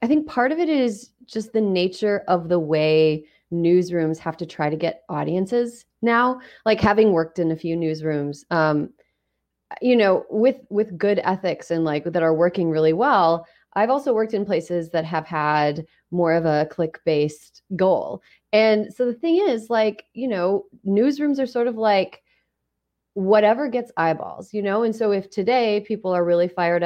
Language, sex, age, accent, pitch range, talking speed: English, female, 30-49, American, 160-210 Hz, 180 wpm